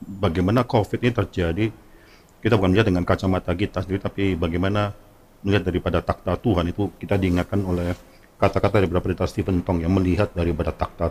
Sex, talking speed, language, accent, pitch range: male, 160 wpm, Indonesian, native, 95-110 Hz